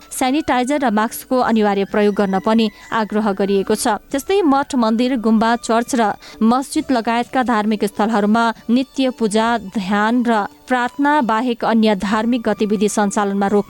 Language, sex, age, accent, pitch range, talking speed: English, female, 20-39, Indian, 210-250 Hz, 140 wpm